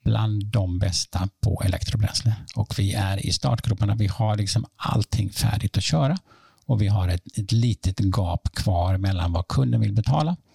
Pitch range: 95-120 Hz